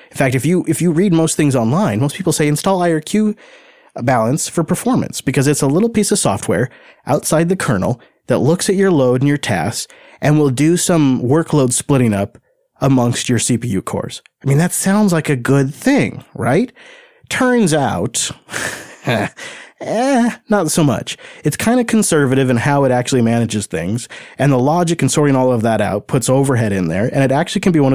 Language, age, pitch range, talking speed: English, 30-49, 115-160 Hz, 195 wpm